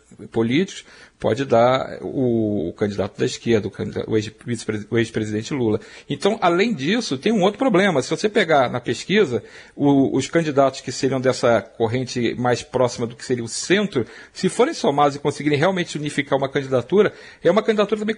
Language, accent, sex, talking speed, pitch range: Portuguese, Brazilian, male, 175 wpm, 120-160 Hz